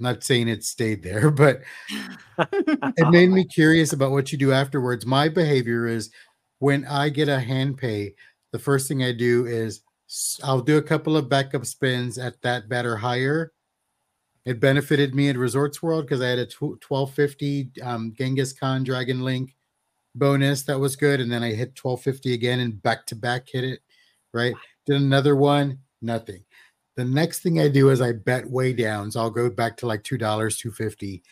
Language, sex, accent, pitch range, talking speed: English, male, American, 115-140 Hz, 190 wpm